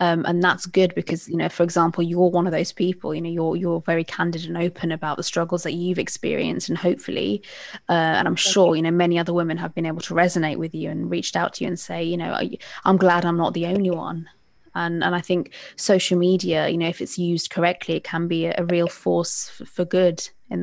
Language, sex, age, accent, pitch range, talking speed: English, female, 20-39, British, 165-175 Hz, 240 wpm